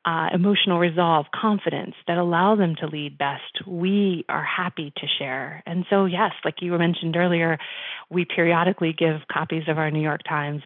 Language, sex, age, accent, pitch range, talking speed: English, female, 30-49, American, 150-175 Hz, 175 wpm